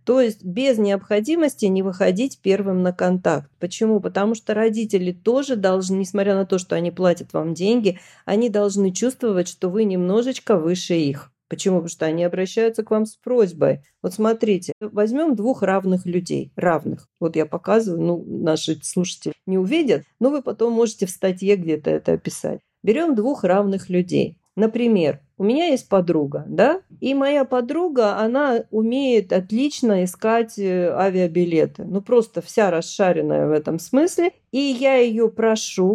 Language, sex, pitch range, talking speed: Russian, female, 180-230 Hz, 155 wpm